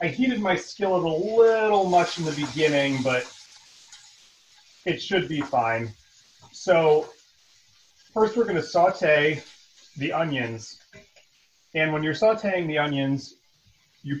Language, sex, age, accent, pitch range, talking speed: English, male, 30-49, American, 120-155 Hz, 125 wpm